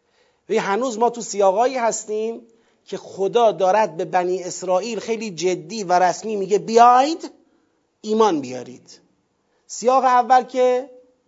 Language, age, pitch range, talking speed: Persian, 40-59, 190-250 Hz, 120 wpm